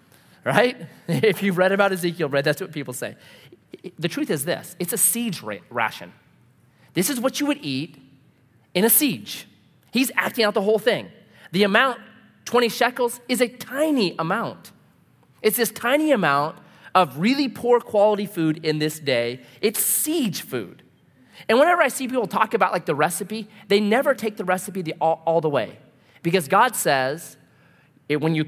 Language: English